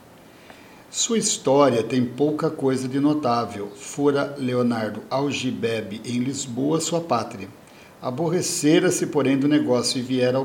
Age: 60-79